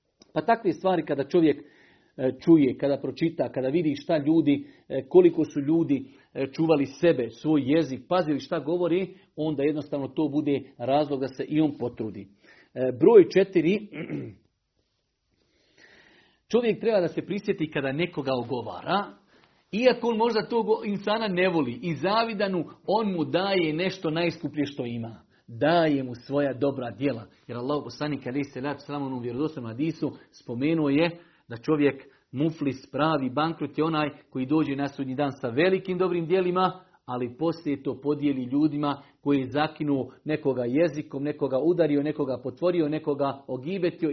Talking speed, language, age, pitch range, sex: 145 wpm, Croatian, 50-69, 140-180 Hz, male